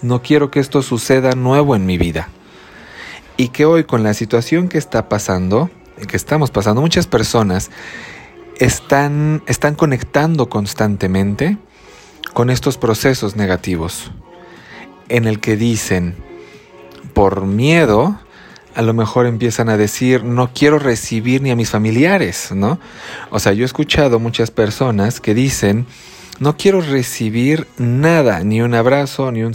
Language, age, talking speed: Spanish, 40-59, 140 wpm